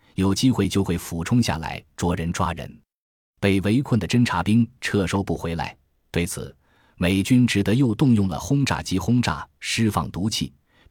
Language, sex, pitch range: Chinese, male, 85-115 Hz